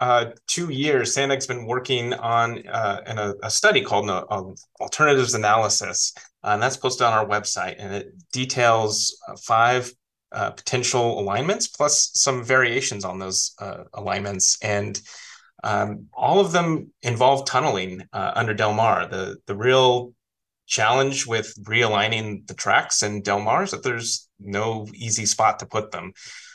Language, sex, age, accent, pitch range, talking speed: English, male, 30-49, American, 100-125 Hz, 160 wpm